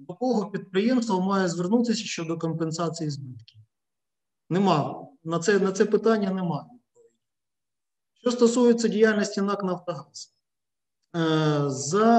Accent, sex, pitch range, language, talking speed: native, male, 155-210 Hz, Ukrainian, 105 wpm